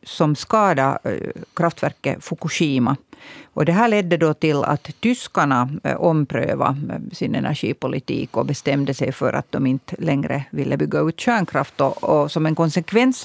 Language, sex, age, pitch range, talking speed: Swedish, female, 50-69, 135-170 Hz, 125 wpm